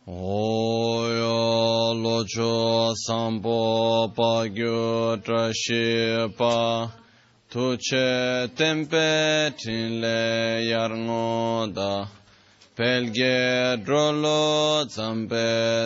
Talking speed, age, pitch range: 40 wpm, 20-39, 115-150 Hz